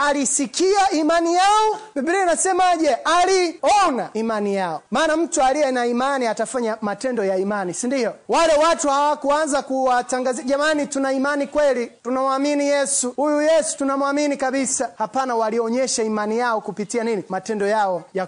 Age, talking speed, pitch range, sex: 30-49, 140 wpm, 225-295 Hz, male